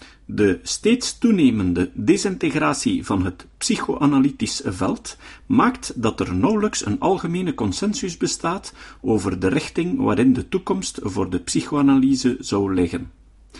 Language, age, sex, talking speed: Dutch, 50-69, male, 120 wpm